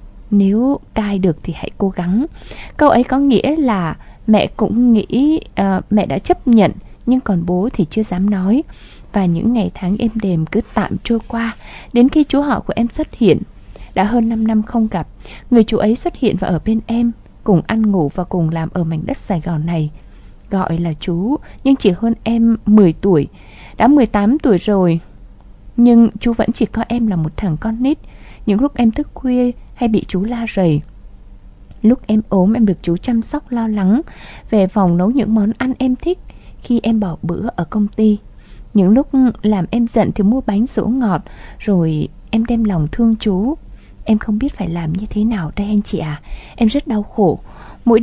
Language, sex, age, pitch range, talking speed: Vietnamese, female, 20-39, 185-235 Hz, 205 wpm